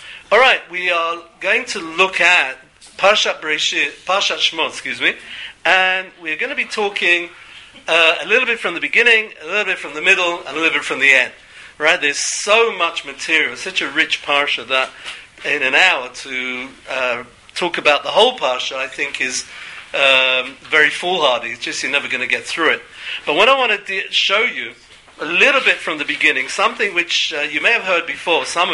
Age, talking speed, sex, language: 50-69, 200 wpm, male, English